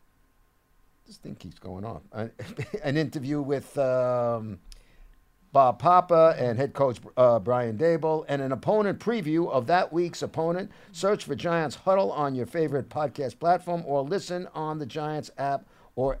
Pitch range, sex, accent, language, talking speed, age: 115-150 Hz, male, American, English, 150 wpm, 50-69